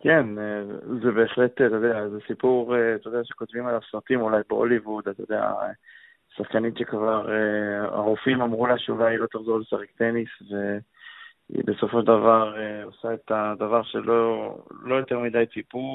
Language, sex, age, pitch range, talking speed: Hebrew, male, 20-39, 110-120 Hz, 145 wpm